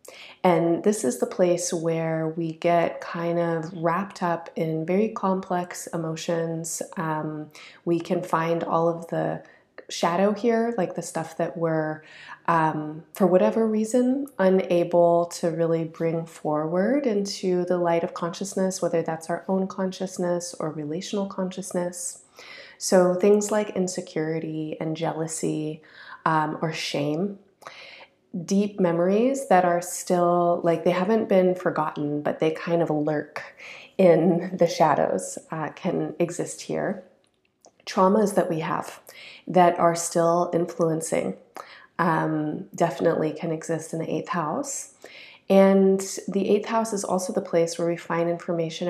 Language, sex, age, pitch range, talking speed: English, female, 20-39, 165-185 Hz, 135 wpm